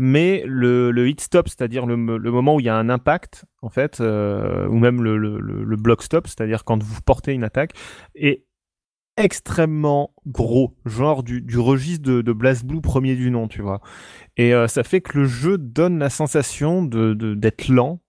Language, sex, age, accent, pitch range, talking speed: French, male, 20-39, French, 115-145 Hz, 180 wpm